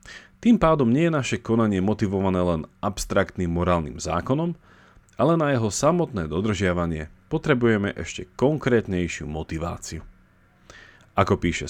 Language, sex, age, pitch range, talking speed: Slovak, male, 40-59, 85-120 Hz, 115 wpm